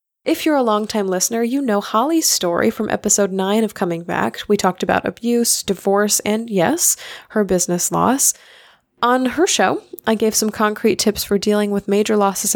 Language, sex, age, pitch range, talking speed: English, female, 20-39, 190-230 Hz, 180 wpm